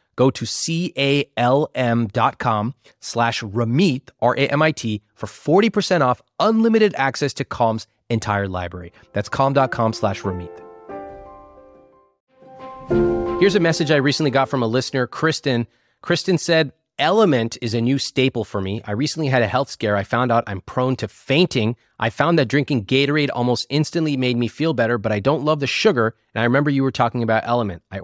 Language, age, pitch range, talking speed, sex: English, 30-49, 110-145 Hz, 165 wpm, male